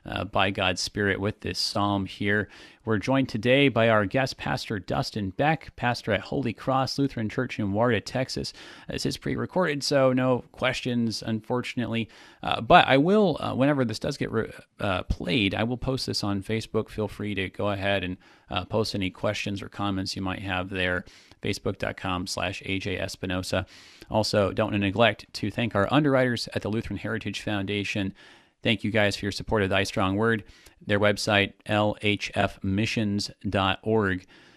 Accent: American